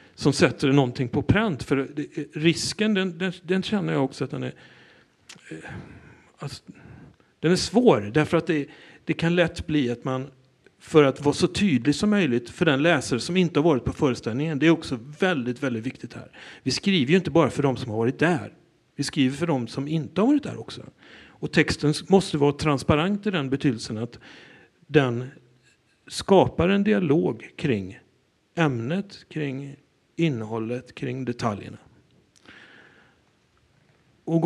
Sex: male